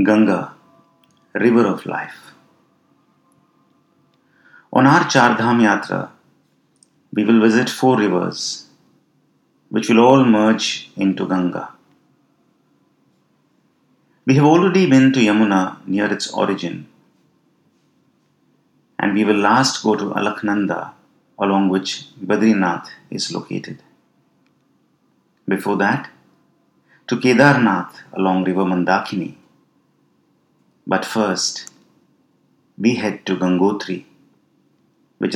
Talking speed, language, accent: 95 wpm, English, Indian